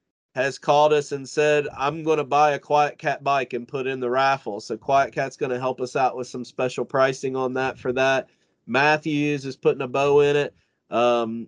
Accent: American